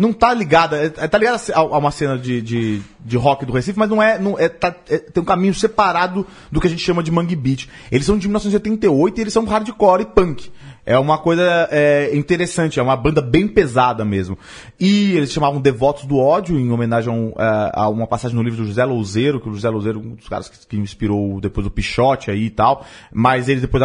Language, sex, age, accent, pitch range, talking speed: Portuguese, male, 20-39, Brazilian, 125-200 Hz, 230 wpm